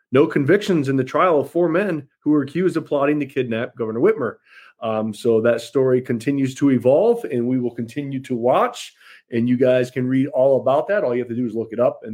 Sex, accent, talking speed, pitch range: male, American, 235 wpm, 125-165 Hz